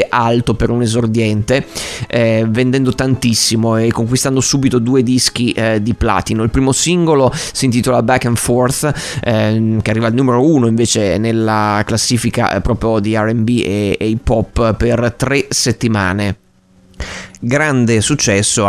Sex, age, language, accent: male, 30-49, Italian, native